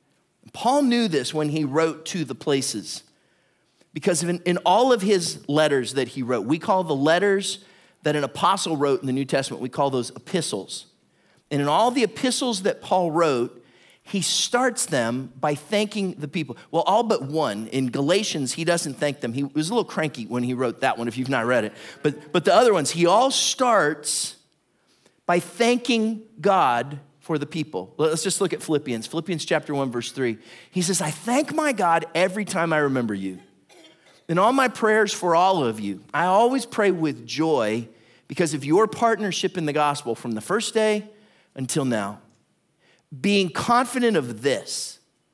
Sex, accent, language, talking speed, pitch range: male, American, English, 185 wpm, 130-200 Hz